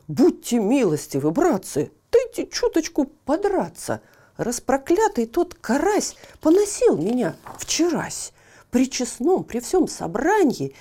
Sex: female